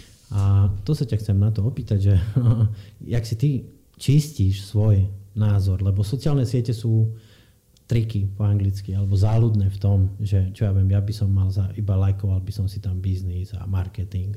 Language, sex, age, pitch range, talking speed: Slovak, male, 30-49, 100-115 Hz, 185 wpm